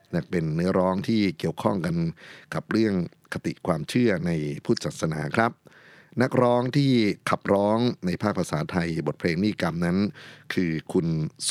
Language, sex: Thai, male